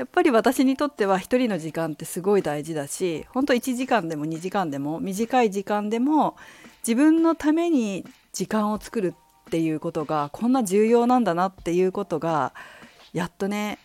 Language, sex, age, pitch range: Japanese, female, 40-59, 165-235 Hz